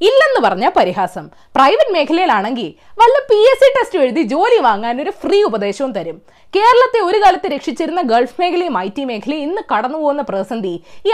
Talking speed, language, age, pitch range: 140 wpm, Malayalam, 20-39, 215-350 Hz